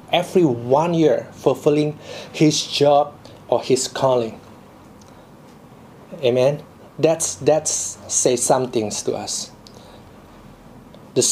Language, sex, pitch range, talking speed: English, male, 135-170 Hz, 95 wpm